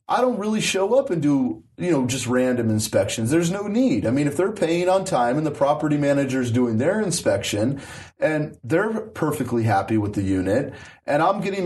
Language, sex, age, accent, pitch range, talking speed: English, male, 30-49, American, 120-170 Hz, 205 wpm